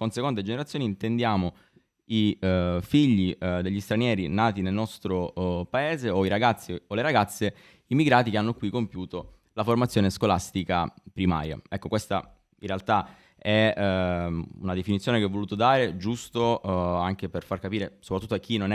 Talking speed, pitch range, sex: 165 wpm, 95-110 Hz, male